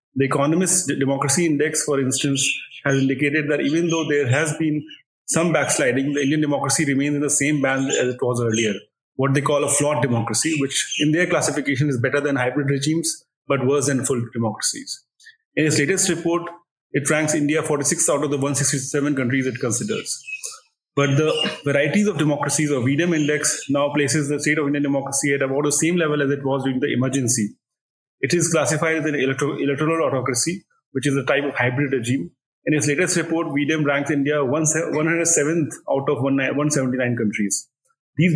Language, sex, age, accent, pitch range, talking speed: English, male, 30-49, Indian, 135-155 Hz, 180 wpm